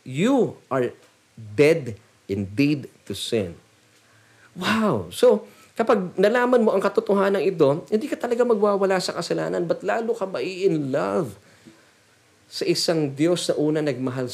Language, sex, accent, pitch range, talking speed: Filipino, male, native, 120-180 Hz, 130 wpm